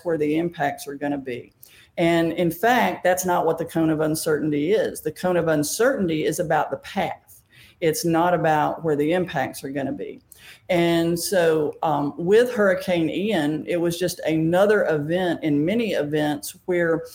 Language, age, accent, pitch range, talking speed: English, 50-69, American, 155-180 Hz, 170 wpm